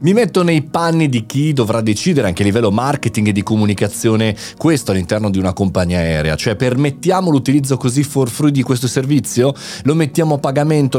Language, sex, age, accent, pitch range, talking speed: Italian, male, 30-49, native, 105-140 Hz, 185 wpm